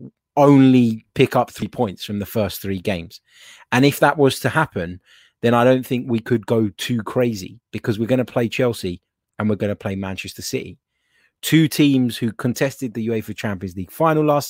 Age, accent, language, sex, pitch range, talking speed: 20-39, British, English, male, 105-140 Hz, 200 wpm